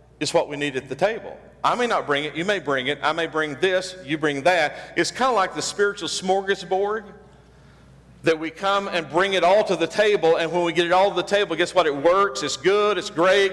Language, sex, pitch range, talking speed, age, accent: English, male, 150-195 Hz, 250 wpm, 50-69, American